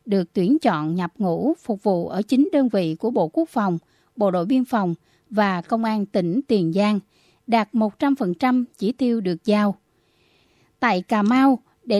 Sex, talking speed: female, 175 wpm